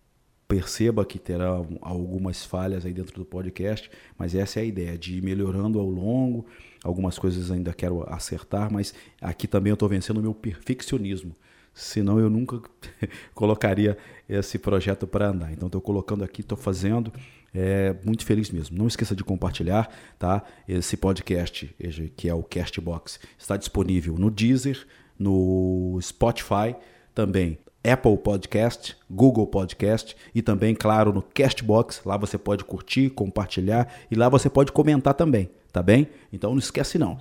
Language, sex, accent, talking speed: Portuguese, male, Brazilian, 155 wpm